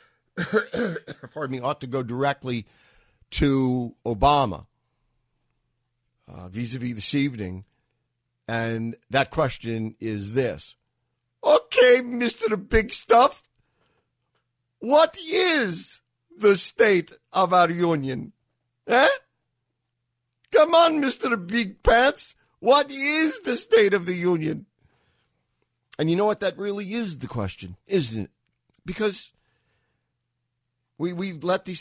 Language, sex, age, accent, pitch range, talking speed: English, male, 50-69, American, 120-170 Hz, 110 wpm